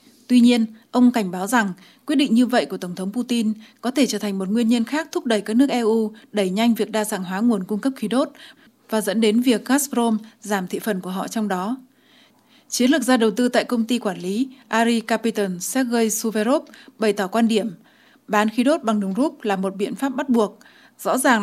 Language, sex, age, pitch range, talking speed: Vietnamese, female, 20-39, 210-255 Hz, 230 wpm